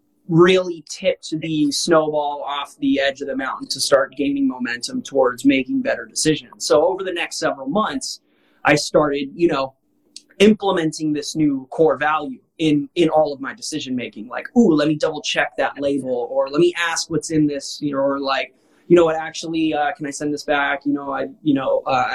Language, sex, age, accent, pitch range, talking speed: English, male, 20-39, American, 140-170 Hz, 205 wpm